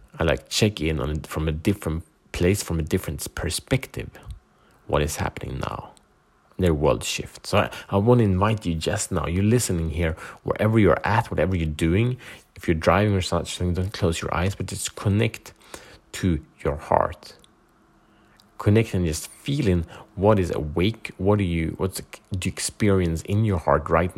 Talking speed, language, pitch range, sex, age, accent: 180 wpm, Swedish, 80-105 Hz, male, 30-49, Norwegian